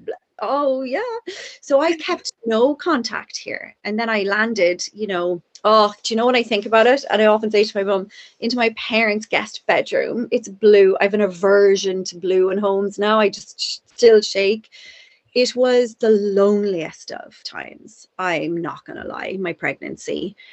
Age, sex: 30-49, female